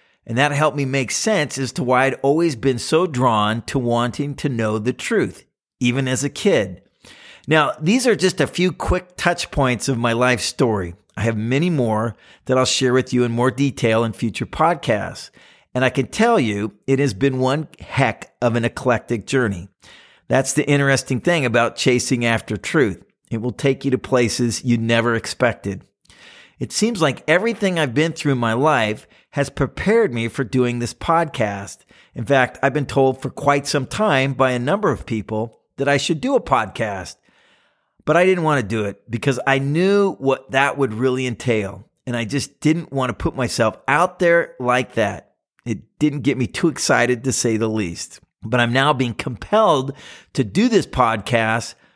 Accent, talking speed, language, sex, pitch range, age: American, 190 wpm, English, male, 115-145 Hz, 40-59